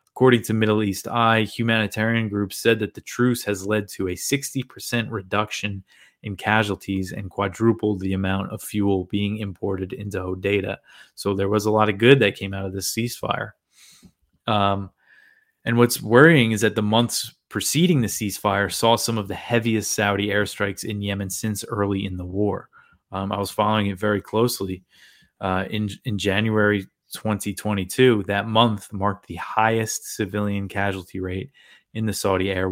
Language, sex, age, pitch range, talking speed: English, male, 20-39, 95-110 Hz, 165 wpm